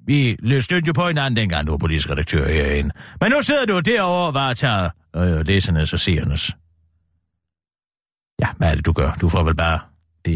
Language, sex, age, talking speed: Danish, male, 40-59, 190 wpm